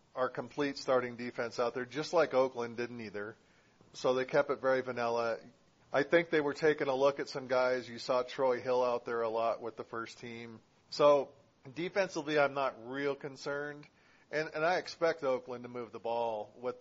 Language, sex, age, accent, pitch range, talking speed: English, male, 40-59, American, 115-145 Hz, 195 wpm